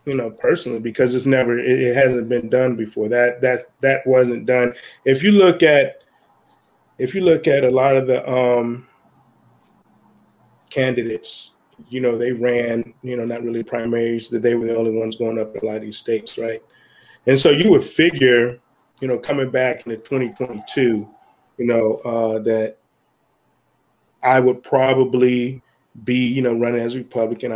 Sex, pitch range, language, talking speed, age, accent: male, 115-130 Hz, English, 170 wpm, 20-39, American